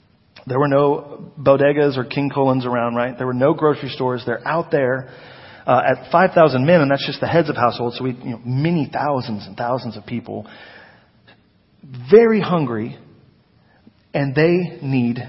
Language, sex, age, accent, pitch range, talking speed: English, male, 40-59, American, 115-165 Hz, 170 wpm